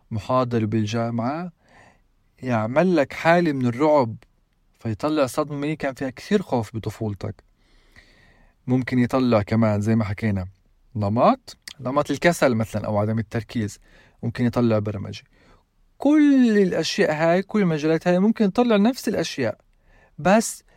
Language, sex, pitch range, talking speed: Arabic, male, 110-150 Hz, 120 wpm